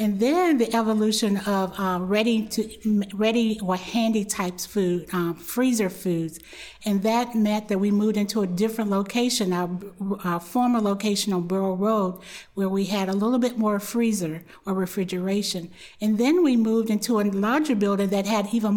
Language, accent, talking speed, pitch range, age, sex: English, American, 175 wpm, 190-220 Hz, 50-69, female